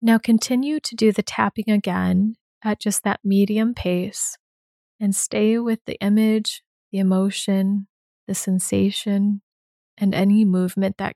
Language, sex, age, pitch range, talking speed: English, female, 20-39, 190-220 Hz, 135 wpm